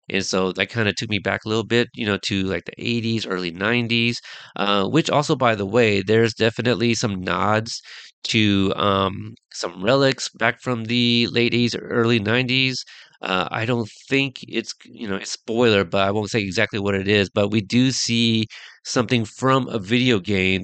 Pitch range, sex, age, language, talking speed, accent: 95-115 Hz, male, 30-49, English, 195 wpm, American